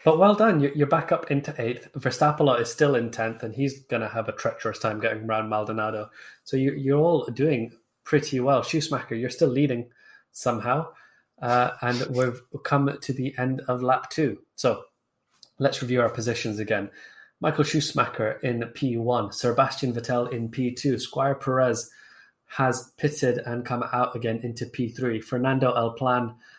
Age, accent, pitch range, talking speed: 20-39, British, 115-130 Hz, 160 wpm